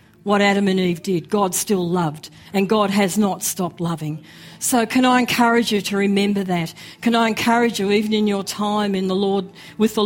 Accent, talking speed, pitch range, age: Australian, 210 wpm, 190-230 Hz, 50-69